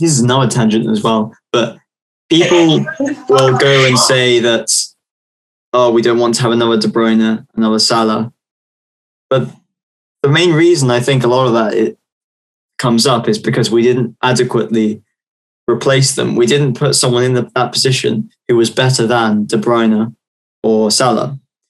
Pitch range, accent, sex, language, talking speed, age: 110-135 Hz, British, male, English, 160 wpm, 20-39